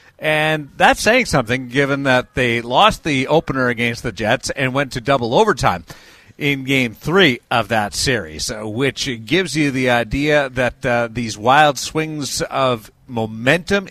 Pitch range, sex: 125-165 Hz, male